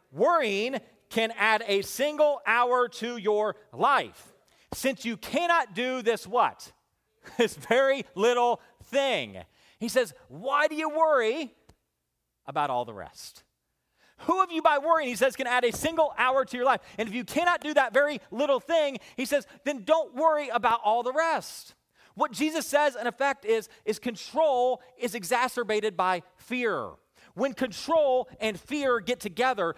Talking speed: 165 wpm